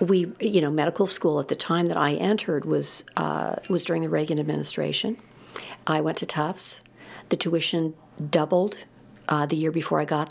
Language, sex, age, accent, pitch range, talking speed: English, female, 50-69, American, 130-160 Hz, 180 wpm